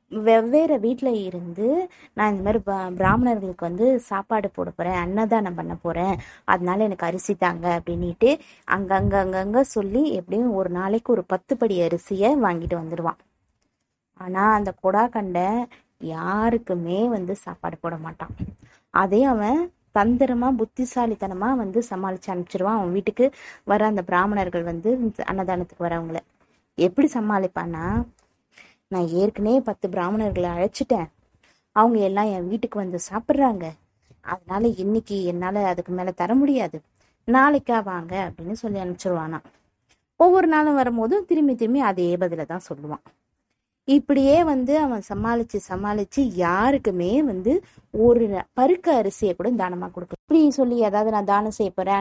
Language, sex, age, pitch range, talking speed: Tamil, female, 20-39, 180-235 Hz, 125 wpm